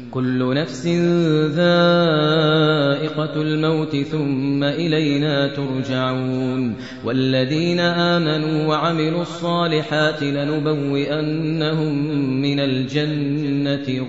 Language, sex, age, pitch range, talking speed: Arabic, male, 30-49, 140-165 Hz, 60 wpm